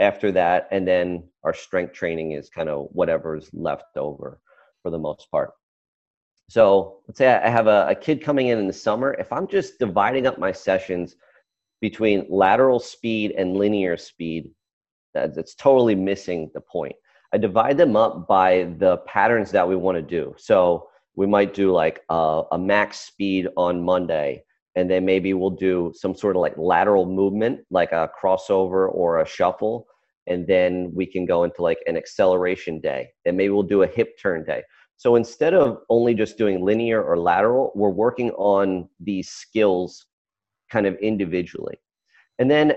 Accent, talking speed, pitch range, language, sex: American, 175 wpm, 90-120 Hz, French, male